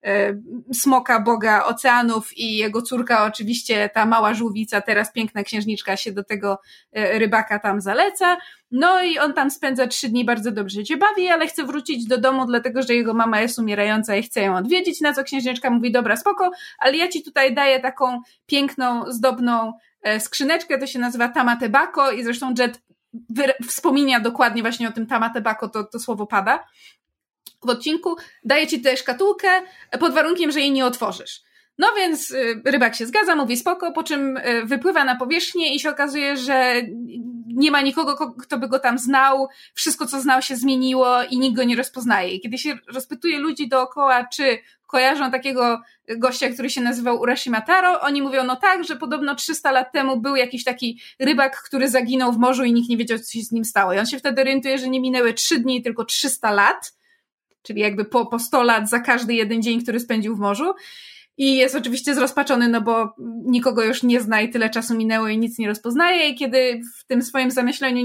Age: 20-39